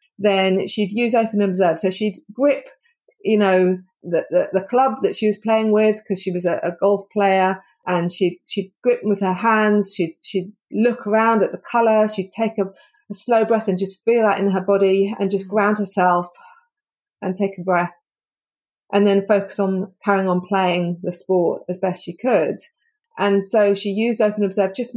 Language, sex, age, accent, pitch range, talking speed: English, female, 40-59, British, 190-245 Hz, 195 wpm